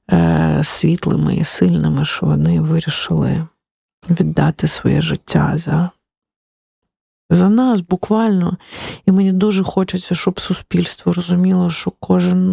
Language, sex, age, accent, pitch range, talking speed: Ukrainian, female, 40-59, native, 155-185 Hz, 105 wpm